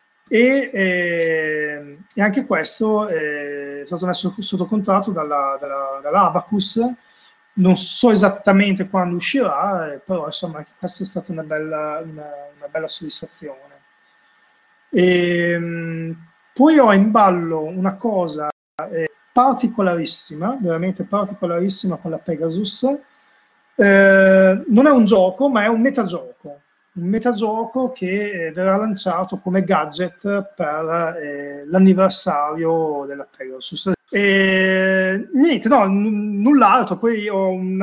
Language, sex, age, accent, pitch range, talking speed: Italian, male, 30-49, native, 165-215 Hz, 115 wpm